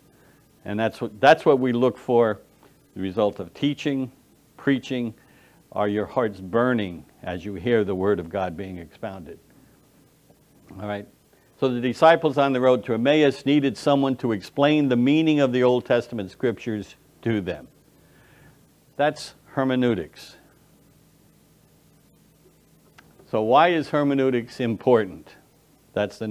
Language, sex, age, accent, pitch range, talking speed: English, male, 60-79, American, 110-145 Hz, 130 wpm